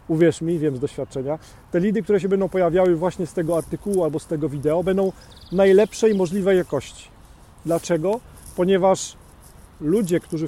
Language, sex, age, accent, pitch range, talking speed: Polish, male, 40-59, native, 135-180 Hz, 155 wpm